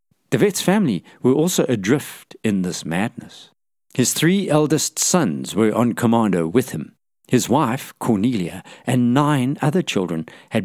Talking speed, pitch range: 140 wpm, 95-130 Hz